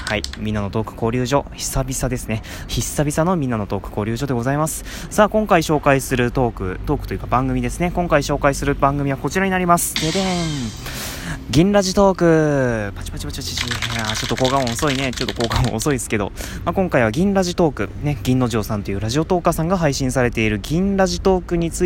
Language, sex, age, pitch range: Japanese, male, 20-39, 115-175 Hz